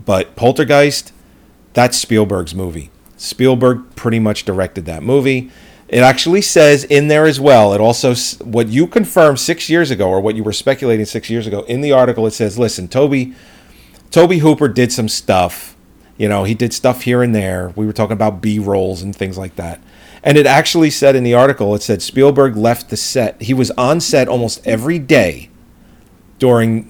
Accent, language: American, English